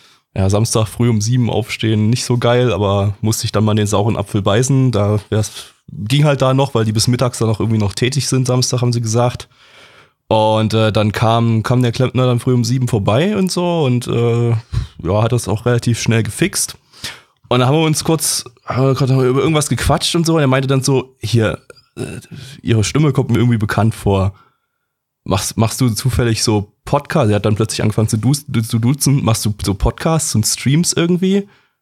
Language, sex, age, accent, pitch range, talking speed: German, male, 20-39, German, 110-140 Hz, 205 wpm